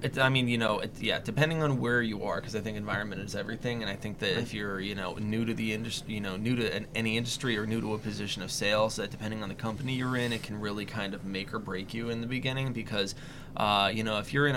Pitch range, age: 100-120 Hz, 20-39